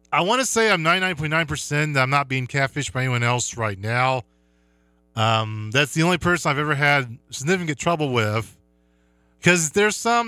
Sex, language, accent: male, English, American